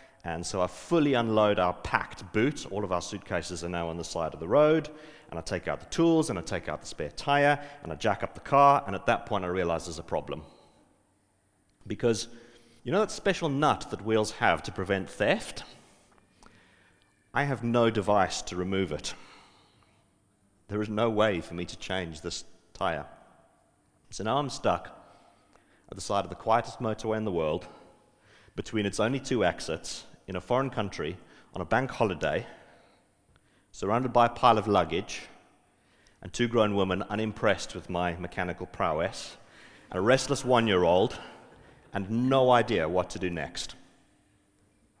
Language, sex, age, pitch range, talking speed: English, male, 40-59, 90-125 Hz, 170 wpm